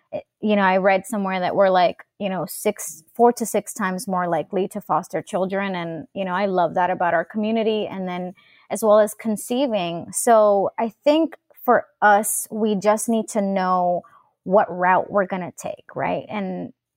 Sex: female